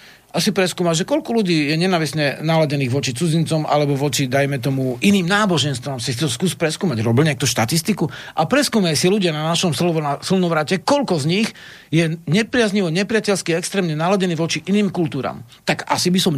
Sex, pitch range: male, 140-185 Hz